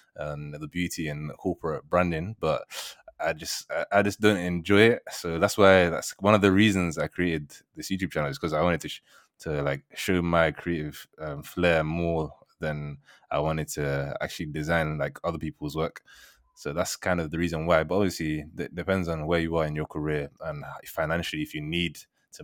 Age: 20-39